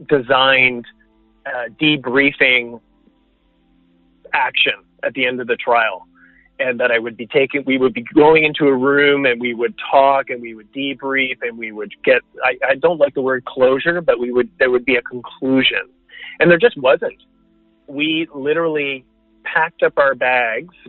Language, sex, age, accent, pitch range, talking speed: English, male, 30-49, American, 120-145 Hz, 170 wpm